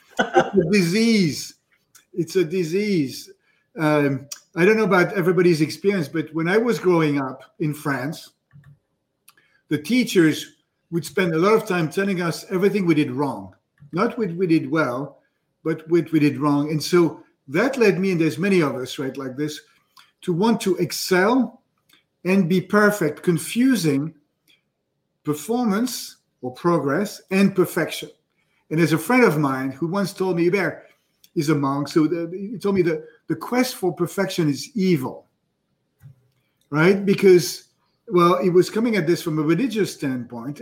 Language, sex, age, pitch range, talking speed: English, male, 50-69, 150-195 Hz, 160 wpm